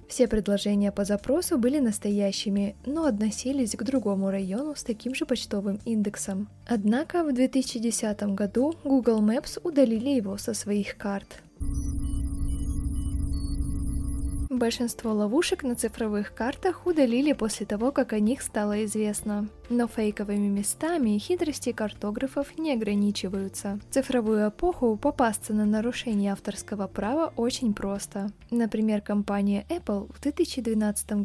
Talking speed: 120 wpm